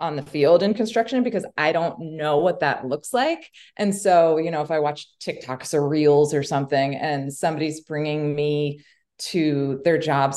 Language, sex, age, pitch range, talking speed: English, female, 20-39, 145-180 Hz, 185 wpm